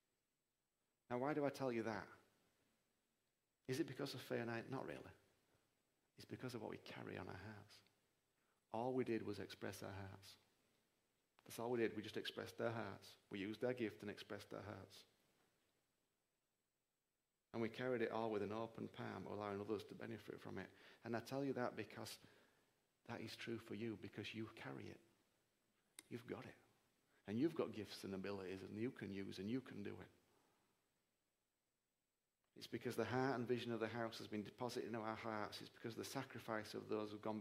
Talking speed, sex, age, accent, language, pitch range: 190 wpm, male, 40-59, British, English, 105-120 Hz